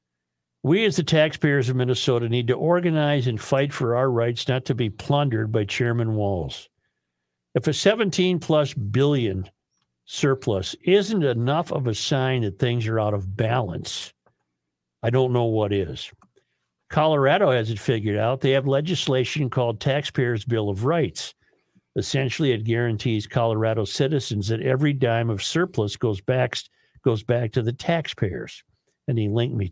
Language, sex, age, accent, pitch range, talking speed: English, male, 50-69, American, 115-155 Hz, 155 wpm